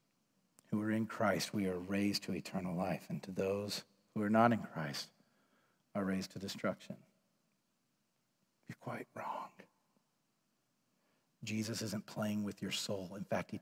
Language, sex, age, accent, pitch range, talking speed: English, male, 40-59, American, 105-120 Hz, 150 wpm